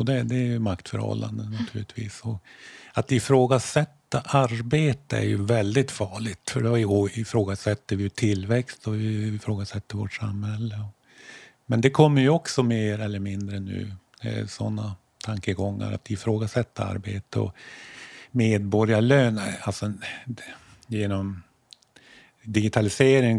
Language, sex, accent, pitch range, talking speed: Swedish, male, native, 100-120 Hz, 110 wpm